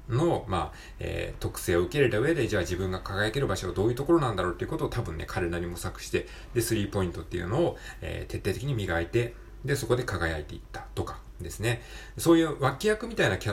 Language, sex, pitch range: Japanese, male, 90-125 Hz